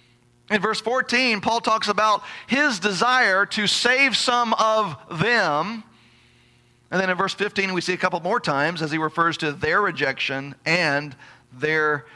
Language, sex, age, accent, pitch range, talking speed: English, male, 40-59, American, 160-225 Hz, 160 wpm